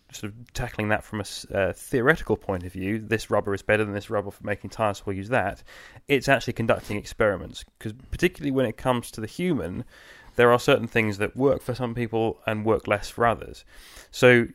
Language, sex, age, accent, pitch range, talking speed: English, male, 20-39, British, 105-125 Hz, 215 wpm